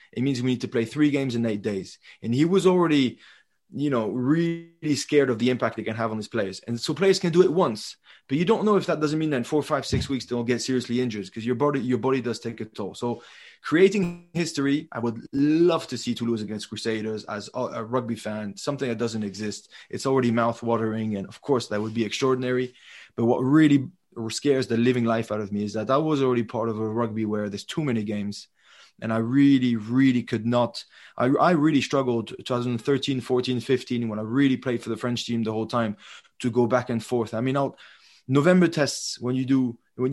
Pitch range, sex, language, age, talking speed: 115-140 Hz, male, English, 20-39, 225 wpm